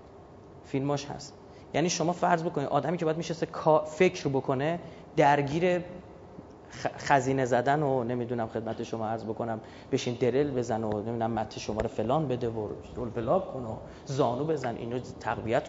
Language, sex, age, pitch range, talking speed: Persian, male, 30-49, 110-145 Hz, 155 wpm